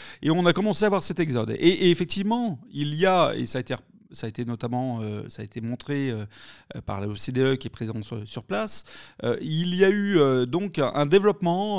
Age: 30-49